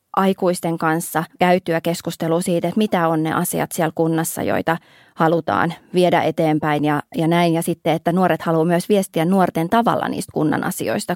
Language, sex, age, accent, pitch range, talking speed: Finnish, female, 20-39, native, 165-195 Hz, 165 wpm